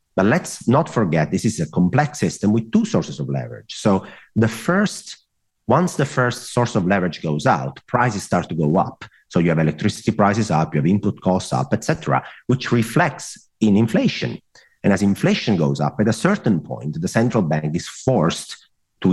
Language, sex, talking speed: Danish, male, 190 wpm